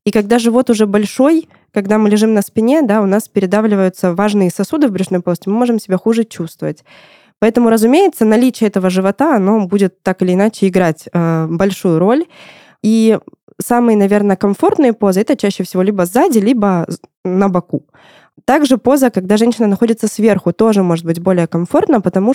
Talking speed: 170 wpm